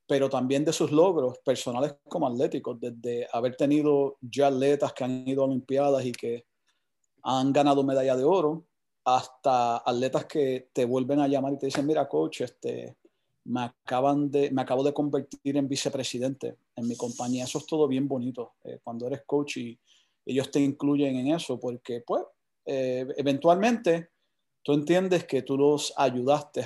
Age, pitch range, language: 30-49, 125-145 Hz, Spanish